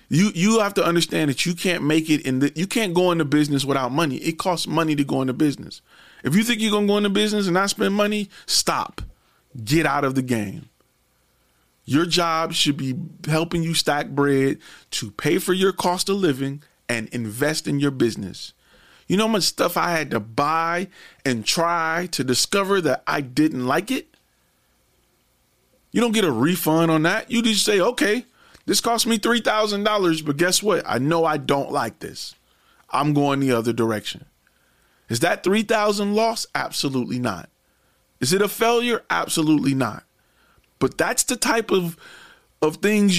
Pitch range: 145-205 Hz